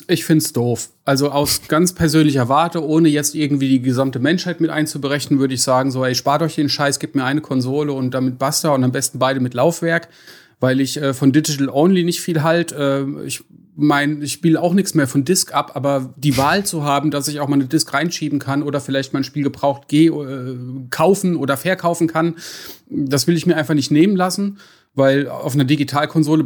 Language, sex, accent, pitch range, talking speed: German, male, German, 140-160 Hz, 210 wpm